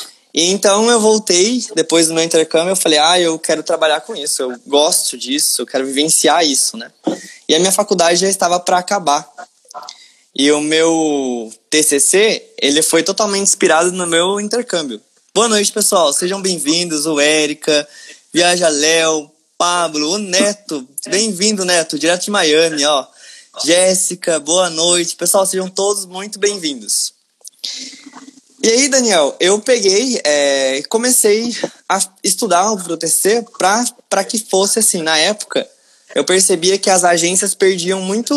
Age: 20-39